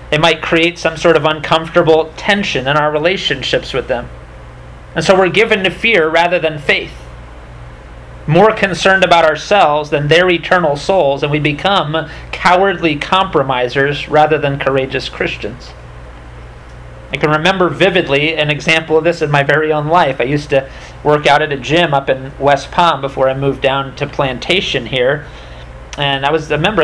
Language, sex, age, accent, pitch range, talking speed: English, male, 40-59, American, 135-170 Hz, 170 wpm